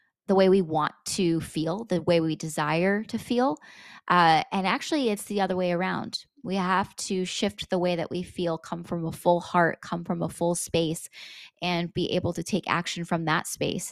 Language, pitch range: English, 170-210 Hz